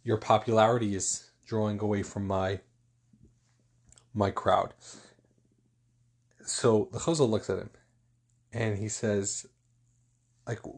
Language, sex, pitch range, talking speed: English, male, 110-130 Hz, 105 wpm